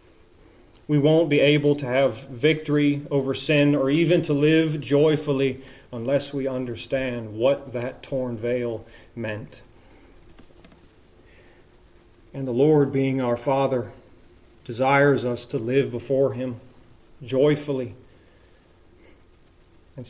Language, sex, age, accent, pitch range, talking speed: English, male, 40-59, American, 110-145 Hz, 110 wpm